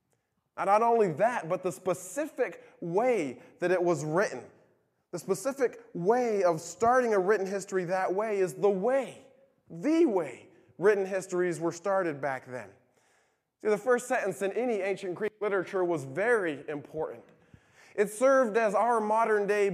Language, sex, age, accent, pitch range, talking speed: English, male, 20-39, American, 170-225 Hz, 155 wpm